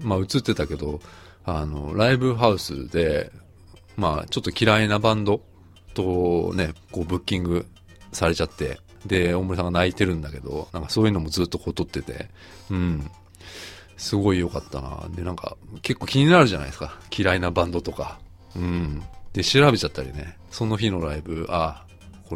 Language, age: Japanese, 40-59